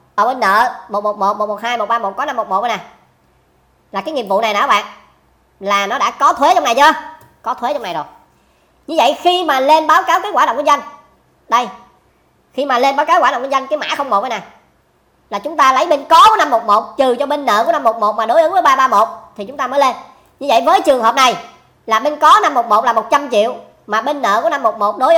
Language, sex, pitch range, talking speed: Vietnamese, male, 215-295 Hz, 245 wpm